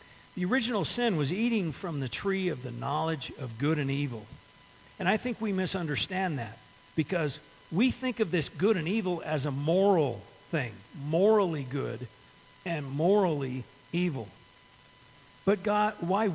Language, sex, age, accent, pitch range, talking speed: English, male, 50-69, American, 145-200 Hz, 150 wpm